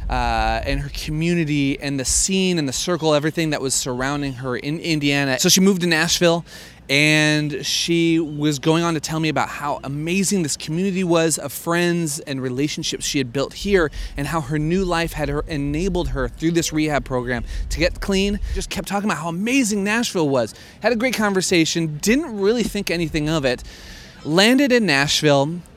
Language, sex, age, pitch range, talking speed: English, male, 30-49, 140-185 Hz, 185 wpm